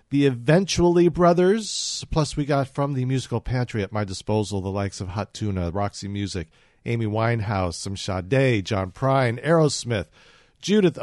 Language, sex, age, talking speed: English, male, 50-69, 150 wpm